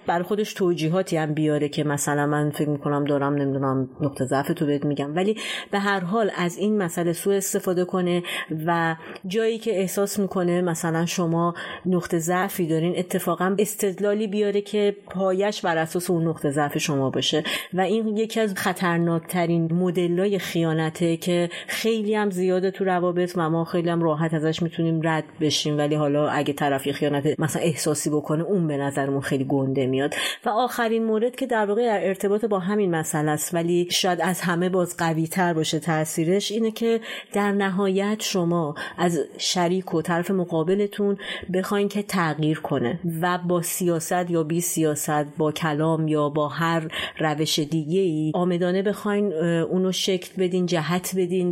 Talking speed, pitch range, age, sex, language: 165 wpm, 155-190 Hz, 30-49, female, Persian